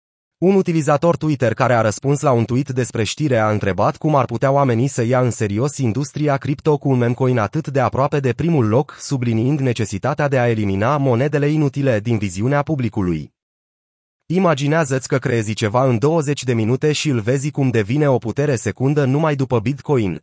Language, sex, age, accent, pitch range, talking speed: Romanian, male, 30-49, native, 115-150 Hz, 180 wpm